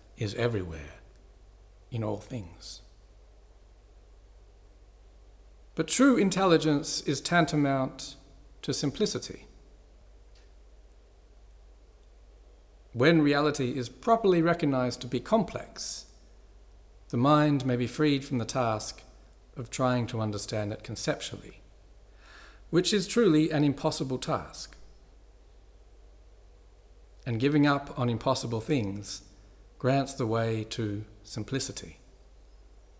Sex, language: male, English